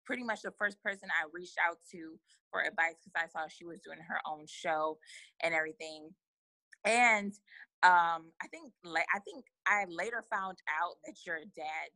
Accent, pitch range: American, 160-195 Hz